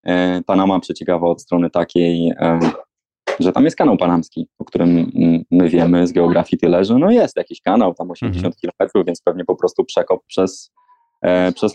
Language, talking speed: Polish, 165 wpm